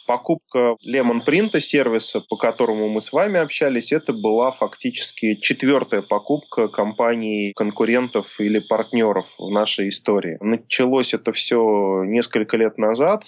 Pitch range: 105-125 Hz